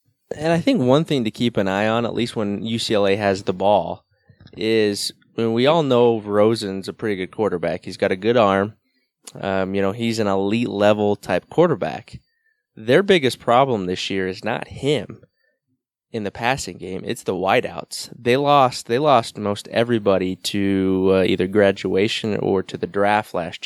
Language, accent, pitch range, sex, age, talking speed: English, American, 95-115 Hz, male, 20-39, 185 wpm